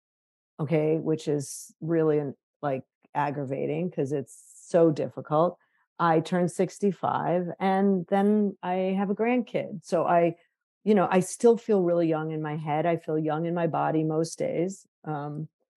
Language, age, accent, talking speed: English, 50-69, American, 150 wpm